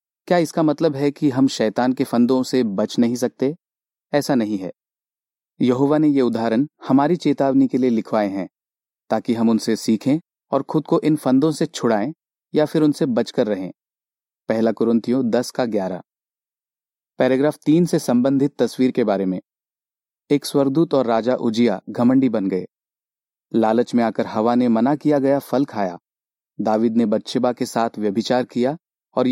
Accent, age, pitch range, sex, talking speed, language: native, 30-49, 115-150 Hz, male, 165 wpm, Hindi